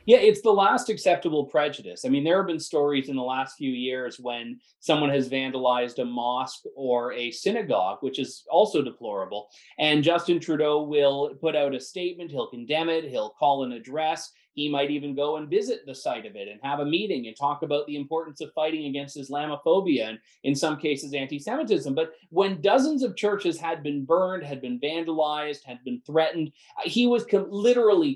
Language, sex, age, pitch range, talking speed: English, male, 30-49, 140-180 Hz, 190 wpm